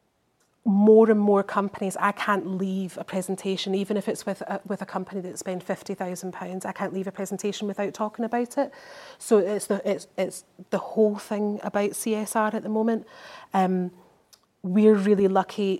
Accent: British